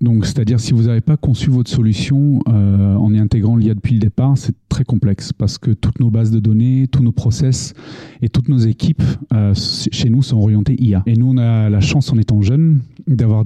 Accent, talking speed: French, 225 wpm